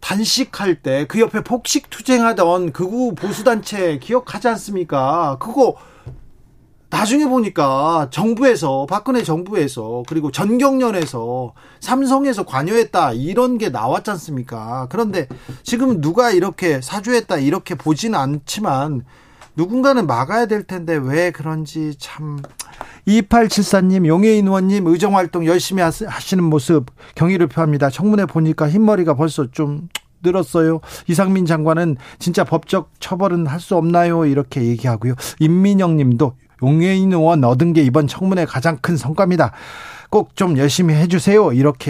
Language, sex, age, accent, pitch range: Korean, male, 40-59, native, 145-200 Hz